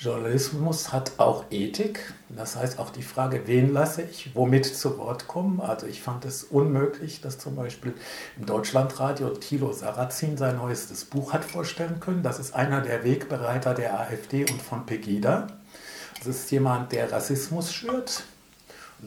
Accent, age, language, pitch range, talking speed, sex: German, 60-79, English, 125-150 Hz, 160 wpm, male